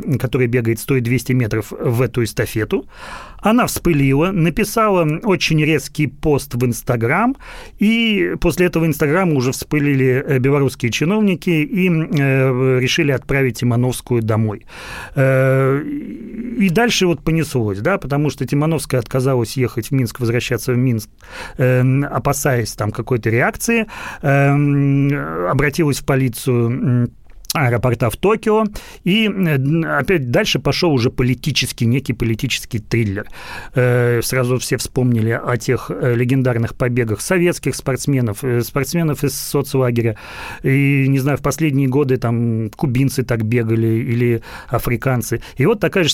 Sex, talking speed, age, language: male, 120 wpm, 30-49, Russian